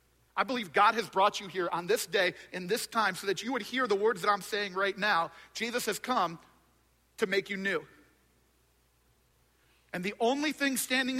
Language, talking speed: English, 200 wpm